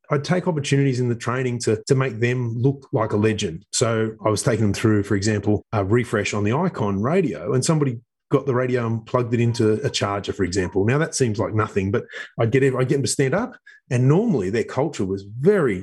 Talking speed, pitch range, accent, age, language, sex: 230 wpm, 110-135 Hz, Australian, 30-49, English, male